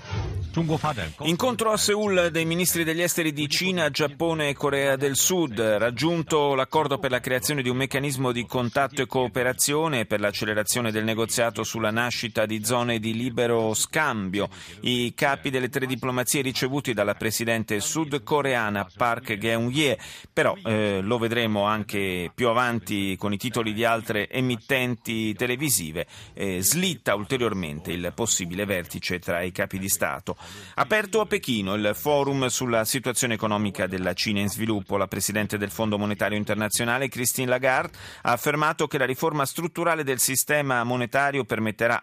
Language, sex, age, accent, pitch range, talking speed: Italian, male, 30-49, native, 105-145 Hz, 145 wpm